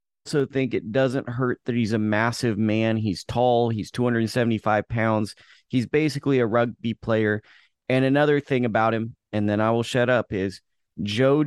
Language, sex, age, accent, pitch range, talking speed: English, male, 30-49, American, 110-130 Hz, 165 wpm